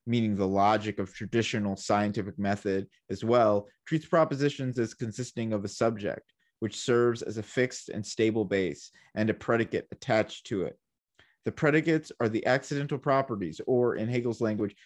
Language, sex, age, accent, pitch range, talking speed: English, male, 30-49, American, 105-135 Hz, 160 wpm